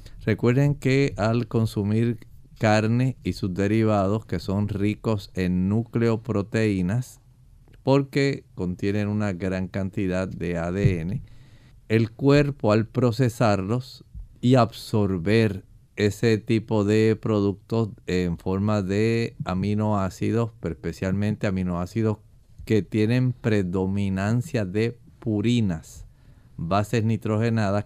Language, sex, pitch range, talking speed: Spanish, male, 100-120 Hz, 95 wpm